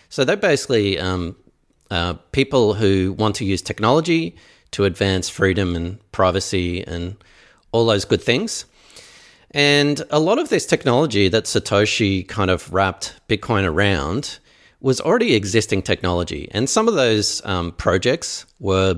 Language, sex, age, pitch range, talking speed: English, male, 40-59, 95-120 Hz, 140 wpm